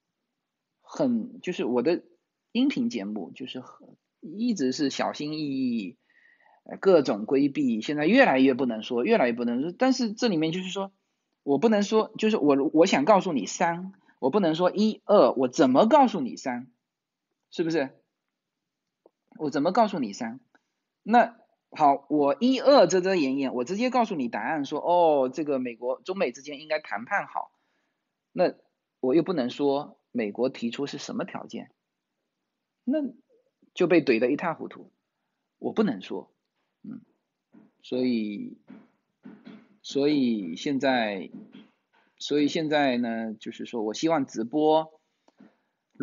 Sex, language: male, Chinese